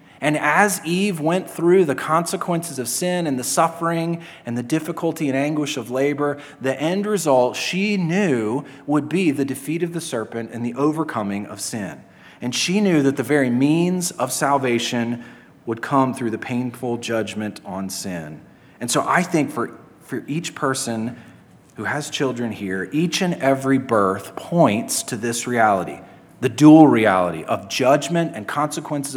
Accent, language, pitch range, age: American, English, 110-150 Hz, 30-49